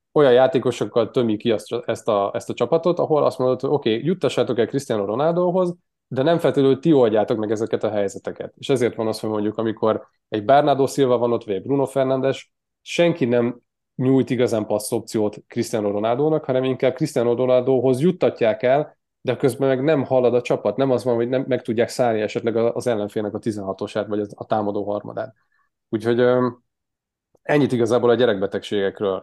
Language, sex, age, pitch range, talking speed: Hungarian, male, 20-39, 105-130 Hz, 180 wpm